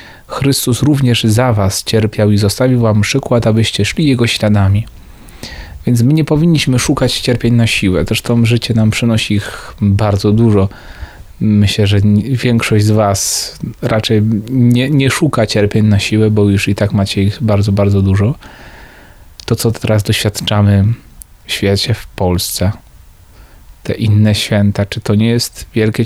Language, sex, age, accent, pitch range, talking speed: Polish, male, 30-49, native, 100-120 Hz, 150 wpm